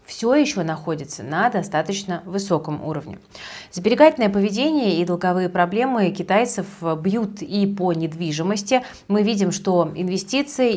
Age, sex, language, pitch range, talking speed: 30-49, female, Russian, 165-205 Hz, 115 wpm